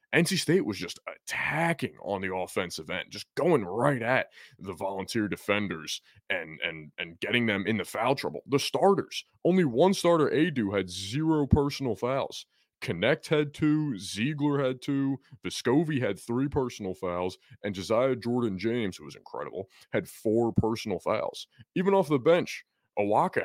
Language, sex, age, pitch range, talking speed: English, male, 20-39, 95-140 Hz, 155 wpm